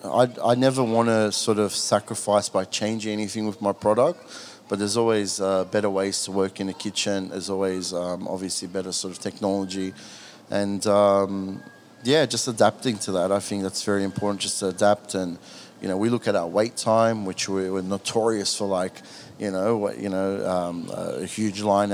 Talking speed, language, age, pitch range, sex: 195 wpm, English, 30-49, 95-110 Hz, male